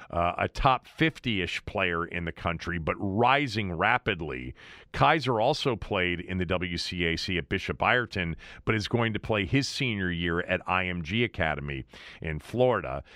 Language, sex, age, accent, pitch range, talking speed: English, male, 40-59, American, 95-140 Hz, 150 wpm